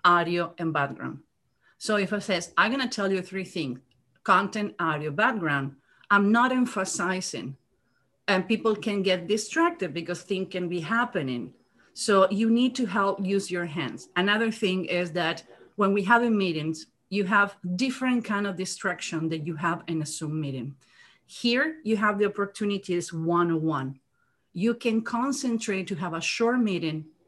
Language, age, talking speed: English, 40-59, 160 wpm